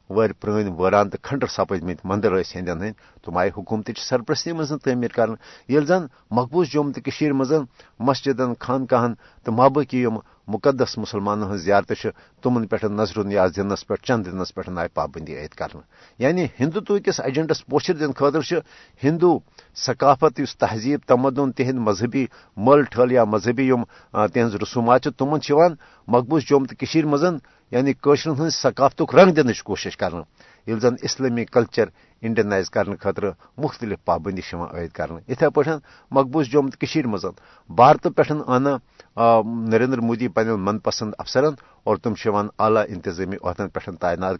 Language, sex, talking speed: Urdu, male, 130 wpm